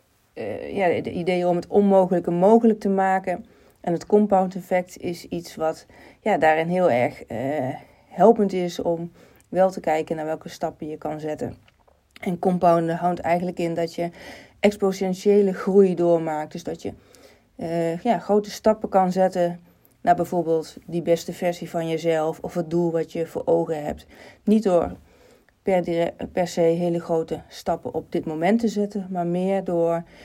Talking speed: 165 wpm